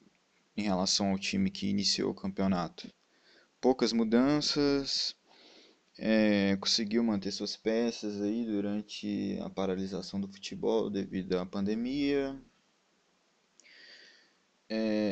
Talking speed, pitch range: 100 wpm, 100-125 Hz